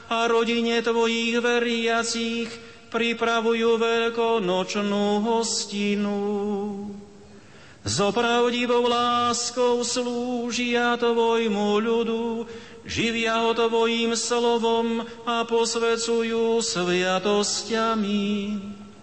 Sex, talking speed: male, 65 wpm